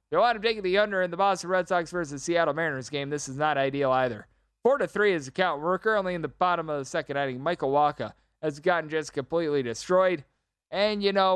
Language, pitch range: English, 140-180 Hz